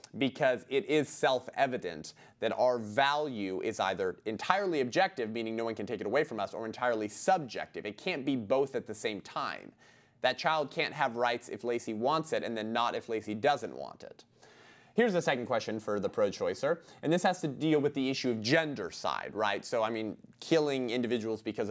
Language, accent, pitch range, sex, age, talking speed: English, American, 125-190 Hz, male, 30-49, 200 wpm